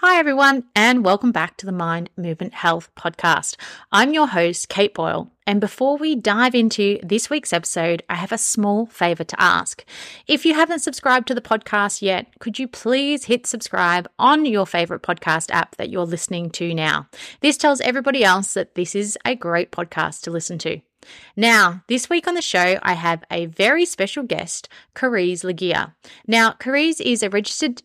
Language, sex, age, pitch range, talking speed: English, female, 30-49, 180-255 Hz, 185 wpm